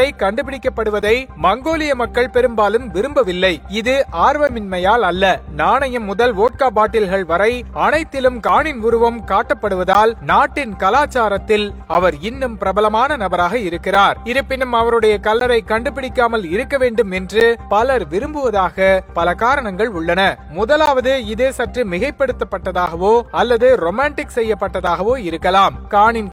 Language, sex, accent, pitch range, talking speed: Tamil, male, native, 200-260 Hz, 100 wpm